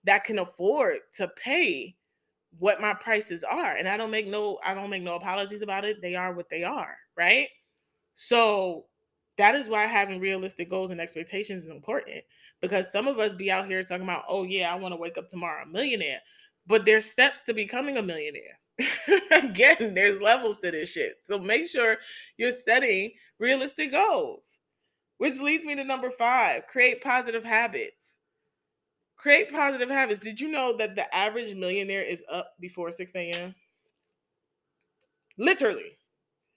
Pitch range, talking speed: 195-270 Hz, 165 wpm